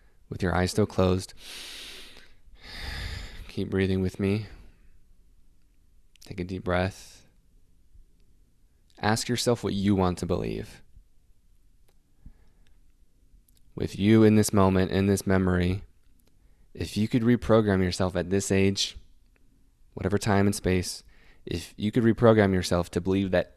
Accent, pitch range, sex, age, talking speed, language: American, 85-100 Hz, male, 20-39, 120 wpm, English